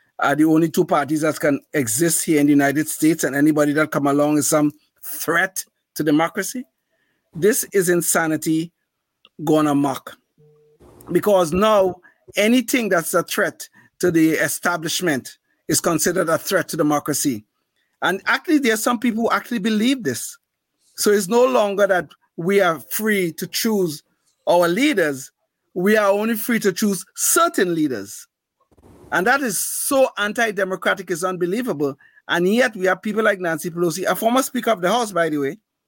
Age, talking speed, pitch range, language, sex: 50-69, 160 wpm, 155-215 Hz, English, male